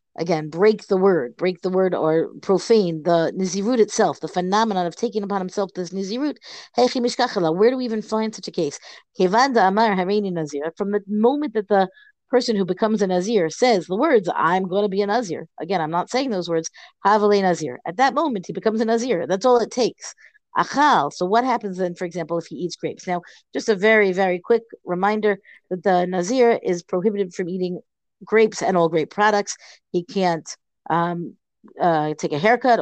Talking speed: 185 wpm